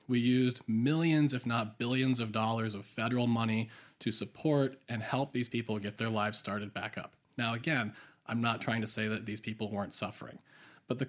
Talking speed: 200 wpm